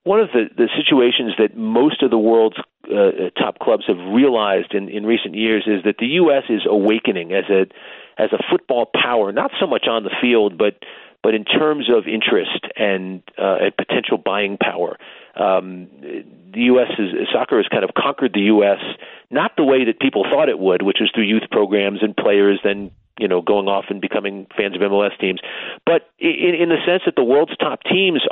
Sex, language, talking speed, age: male, English, 205 wpm, 40-59